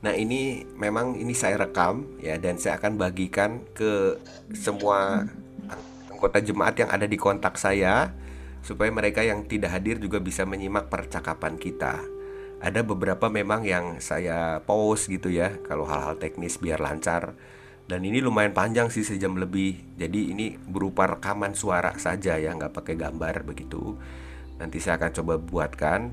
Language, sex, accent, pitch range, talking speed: Indonesian, male, native, 85-105 Hz, 150 wpm